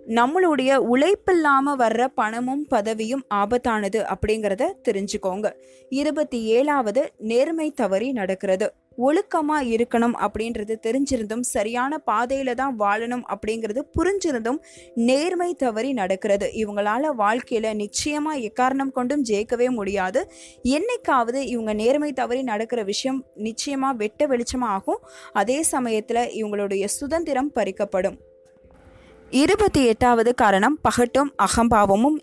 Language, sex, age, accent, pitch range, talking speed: Tamil, female, 20-39, native, 215-275 Hz, 95 wpm